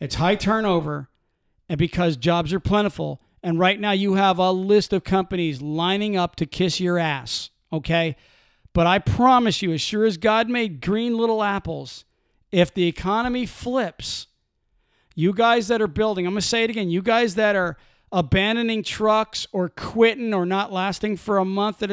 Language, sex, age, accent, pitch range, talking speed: English, male, 50-69, American, 180-220 Hz, 180 wpm